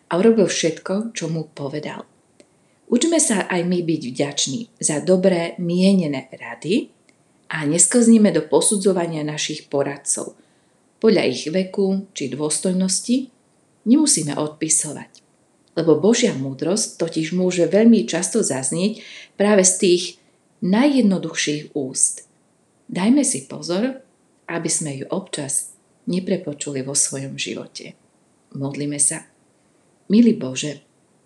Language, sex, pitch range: Slovak, female, 155-210 Hz